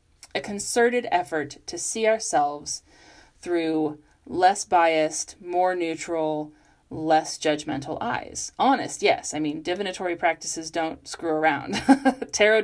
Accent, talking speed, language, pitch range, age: American, 115 wpm, English, 165-230 Hz, 30-49